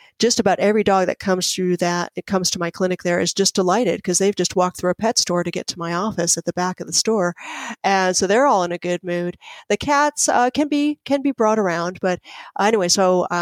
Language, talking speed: English, 255 wpm